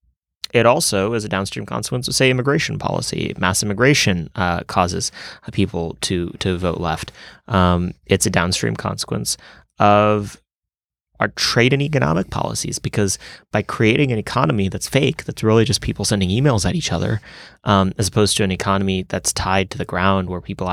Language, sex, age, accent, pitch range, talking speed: English, male, 30-49, American, 90-110 Hz, 170 wpm